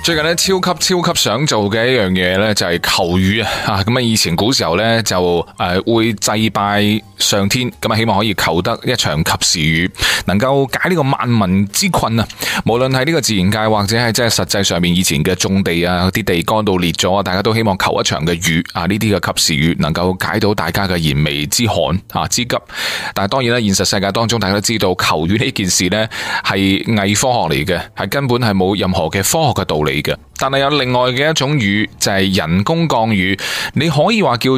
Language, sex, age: Chinese, male, 20-39